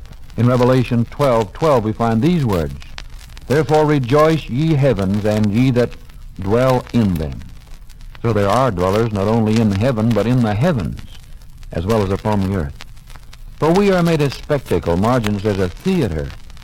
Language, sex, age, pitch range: English, male, 60-79, 95-135 Hz